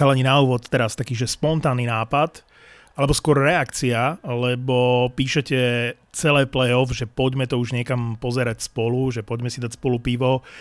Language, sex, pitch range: Slovak, male, 120-140 Hz